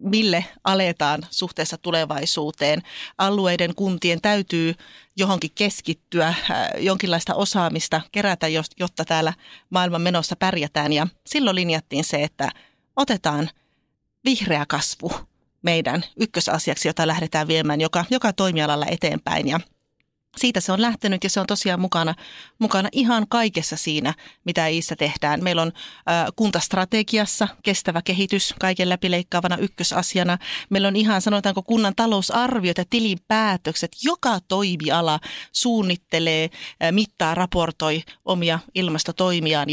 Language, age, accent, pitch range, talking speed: Finnish, 30-49, native, 165-210 Hz, 110 wpm